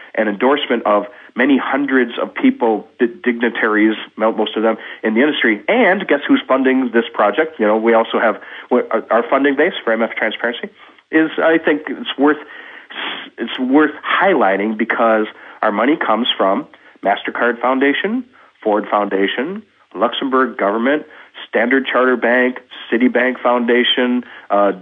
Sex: male